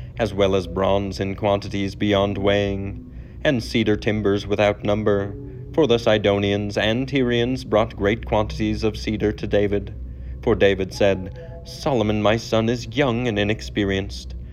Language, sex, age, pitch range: English, male, 30-49, 100-120 Hz